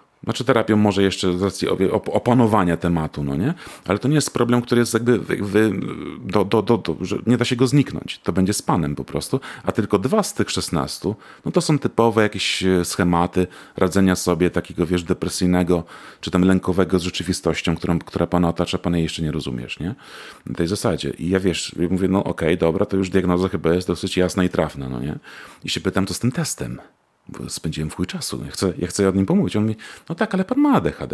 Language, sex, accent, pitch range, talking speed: Polish, male, native, 90-115 Hz, 220 wpm